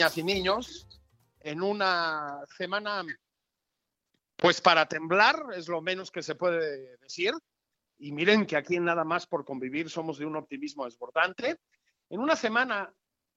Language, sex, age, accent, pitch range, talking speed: Spanish, male, 50-69, Mexican, 160-225 Hz, 140 wpm